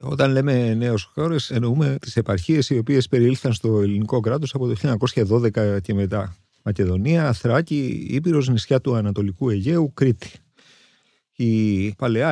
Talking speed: 135 wpm